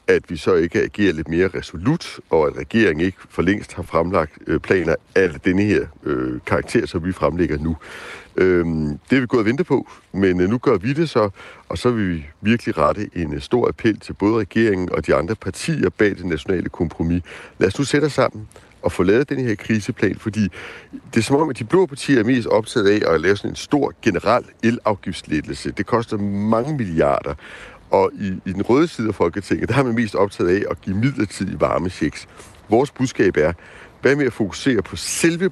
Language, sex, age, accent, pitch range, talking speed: Danish, male, 60-79, native, 90-130 Hz, 210 wpm